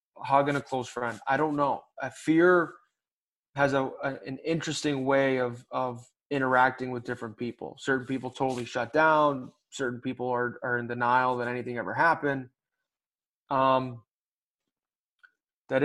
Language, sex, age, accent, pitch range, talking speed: English, male, 20-39, American, 125-150 Hz, 145 wpm